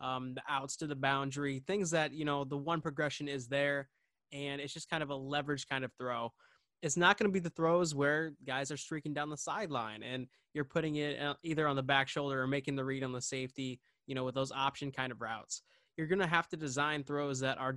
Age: 20-39